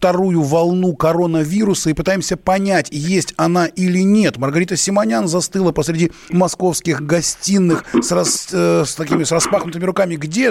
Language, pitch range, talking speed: Russian, 160-190 Hz, 125 wpm